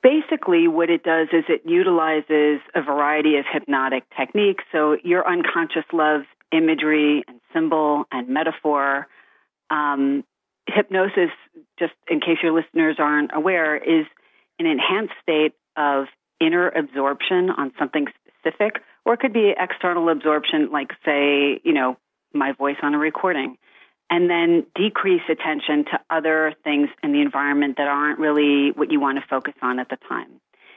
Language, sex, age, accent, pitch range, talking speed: English, female, 40-59, American, 145-175 Hz, 150 wpm